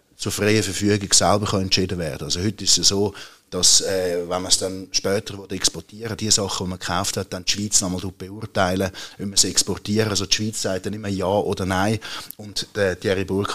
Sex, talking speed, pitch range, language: male, 220 wpm, 90-105 Hz, German